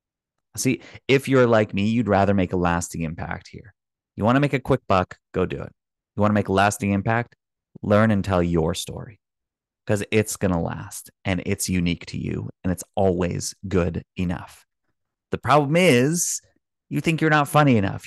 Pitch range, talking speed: 95-130 Hz, 195 wpm